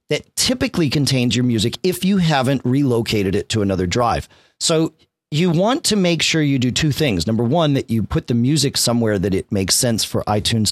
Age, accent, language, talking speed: 40-59, American, English, 205 wpm